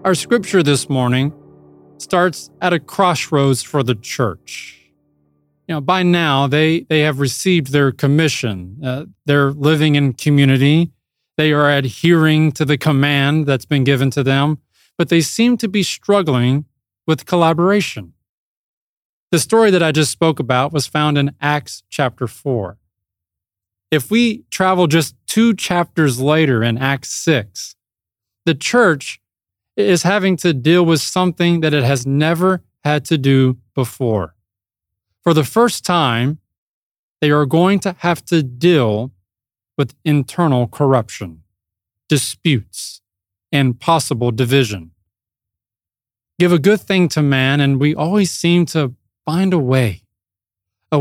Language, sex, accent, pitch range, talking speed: English, male, American, 110-165 Hz, 135 wpm